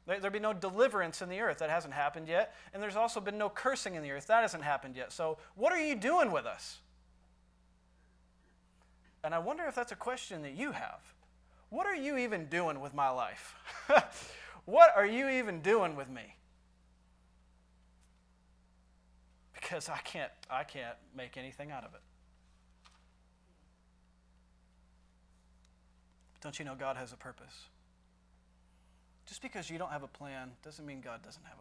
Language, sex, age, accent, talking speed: English, male, 30-49, American, 165 wpm